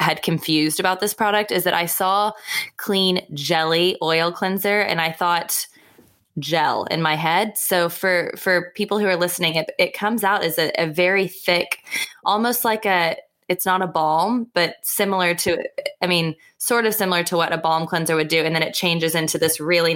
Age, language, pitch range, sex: 20-39, English, 155-180 Hz, female